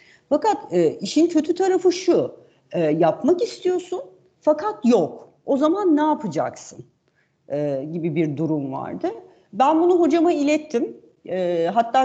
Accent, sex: native, female